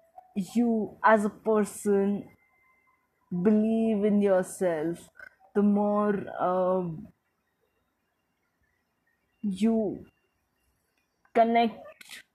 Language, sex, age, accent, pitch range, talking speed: English, female, 20-39, Indian, 185-215 Hz, 60 wpm